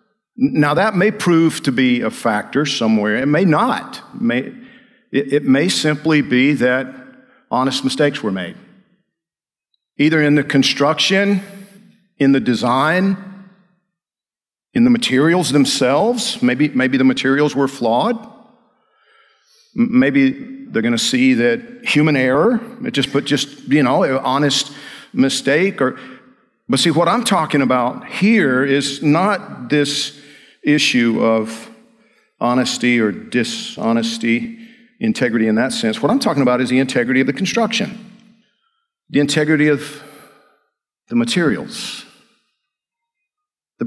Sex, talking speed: male, 125 wpm